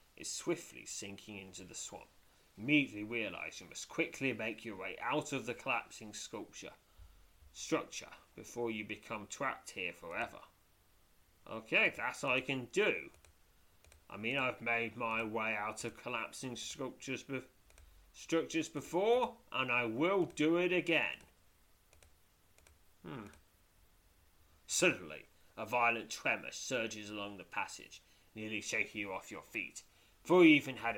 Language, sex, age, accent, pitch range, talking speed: English, male, 30-49, British, 90-130 Hz, 135 wpm